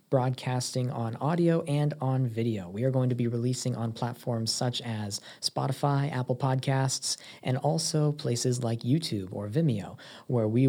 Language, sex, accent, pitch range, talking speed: English, male, American, 115-135 Hz, 155 wpm